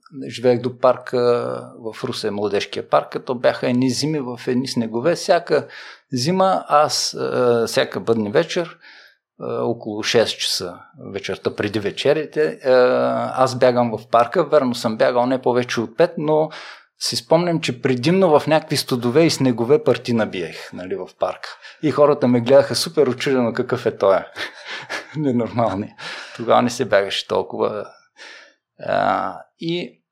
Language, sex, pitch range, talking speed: Bulgarian, male, 120-175 Hz, 145 wpm